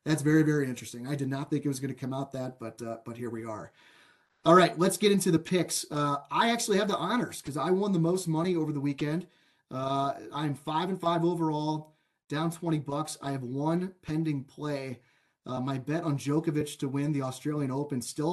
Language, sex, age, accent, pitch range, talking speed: English, male, 30-49, American, 140-165 Hz, 225 wpm